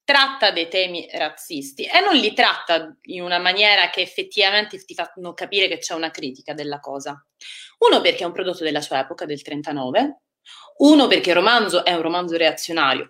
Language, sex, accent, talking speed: Italian, female, native, 185 wpm